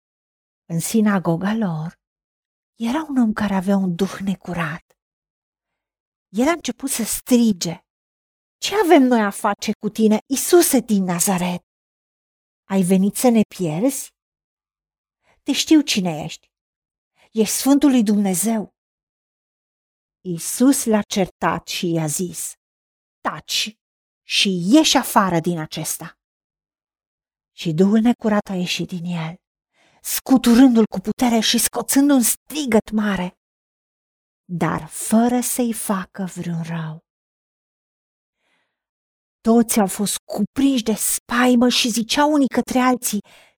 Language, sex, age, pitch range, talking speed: Romanian, female, 50-69, 180-245 Hz, 115 wpm